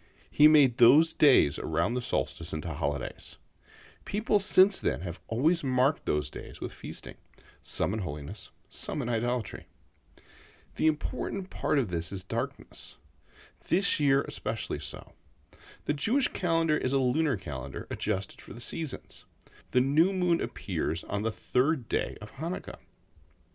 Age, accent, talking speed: 40-59, American, 145 wpm